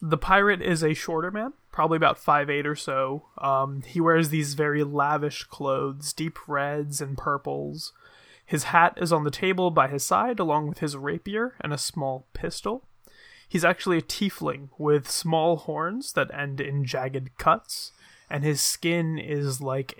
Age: 20-39